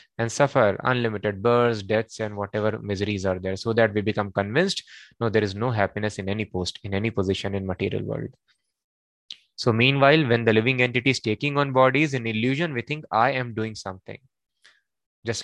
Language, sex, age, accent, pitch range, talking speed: English, male, 20-39, Indian, 110-140 Hz, 185 wpm